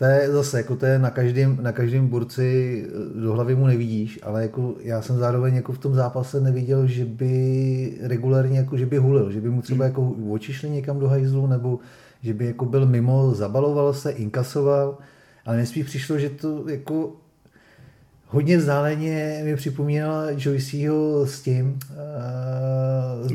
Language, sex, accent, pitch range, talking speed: Czech, male, native, 120-135 Hz, 165 wpm